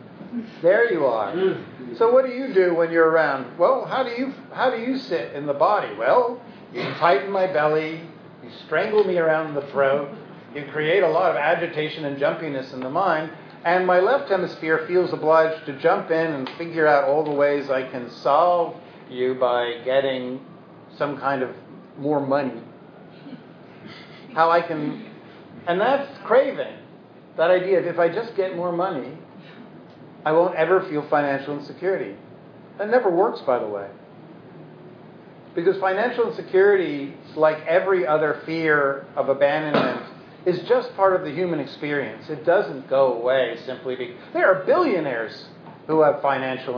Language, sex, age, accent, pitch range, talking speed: English, male, 50-69, American, 140-190 Hz, 160 wpm